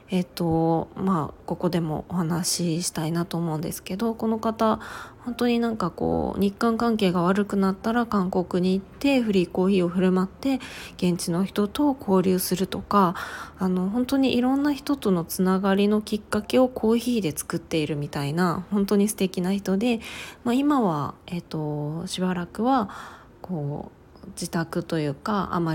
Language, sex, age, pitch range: Japanese, female, 20-39, 170-225 Hz